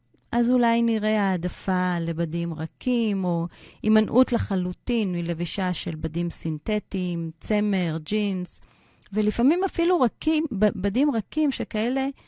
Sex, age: female, 30-49